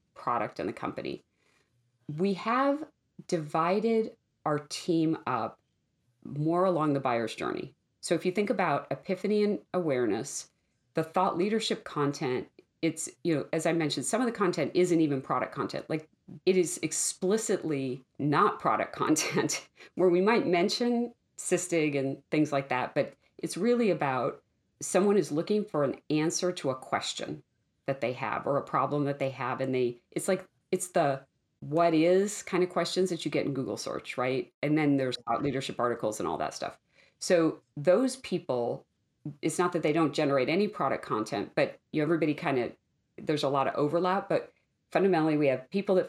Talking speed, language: 175 wpm, English